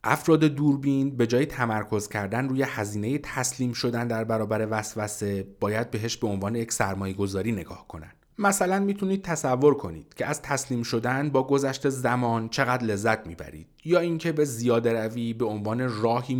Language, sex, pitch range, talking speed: Persian, male, 110-145 Hz, 155 wpm